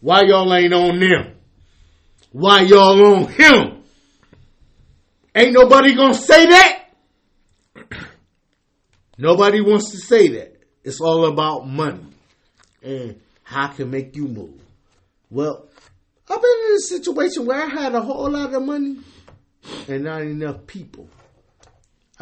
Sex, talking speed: male, 130 wpm